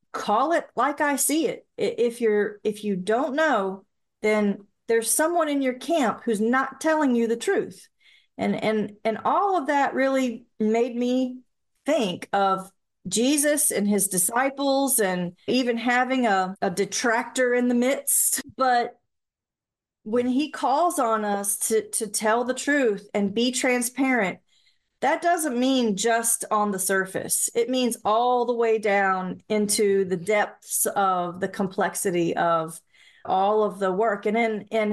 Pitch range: 205-255 Hz